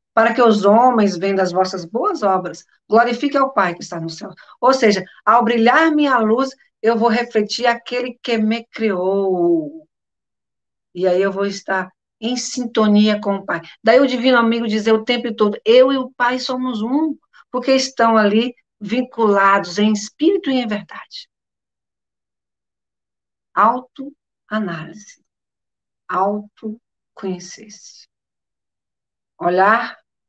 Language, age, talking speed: Portuguese, 50-69, 130 wpm